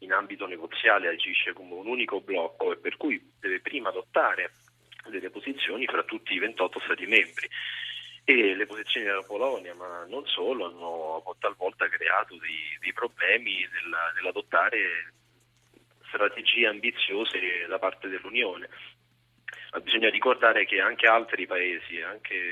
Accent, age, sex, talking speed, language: native, 30-49, male, 130 wpm, Italian